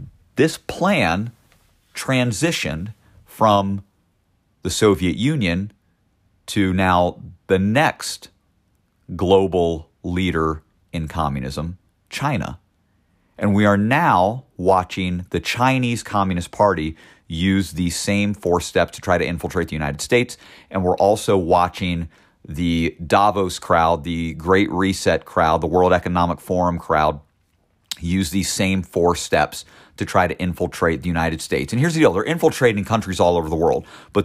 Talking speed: 135 wpm